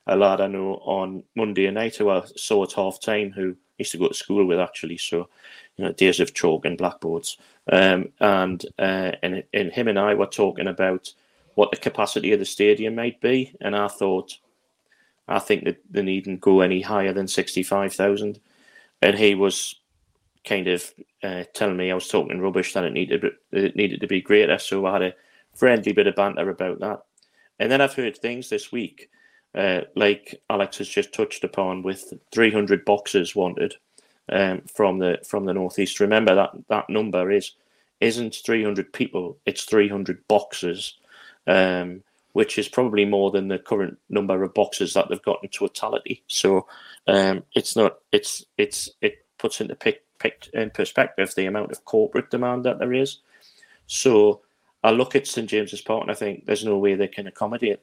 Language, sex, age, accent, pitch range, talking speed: English, male, 30-49, British, 95-115 Hz, 190 wpm